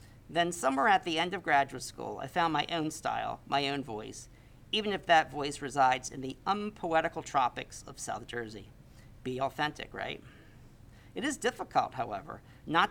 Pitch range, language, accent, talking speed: 125-165 Hz, English, American, 165 wpm